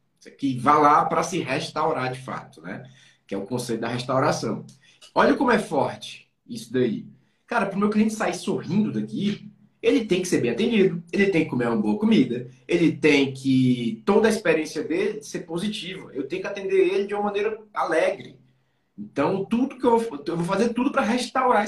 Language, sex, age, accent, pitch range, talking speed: Portuguese, male, 20-39, Brazilian, 150-215 Hz, 195 wpm